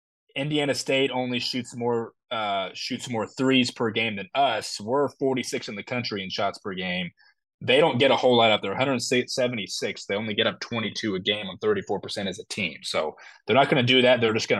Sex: male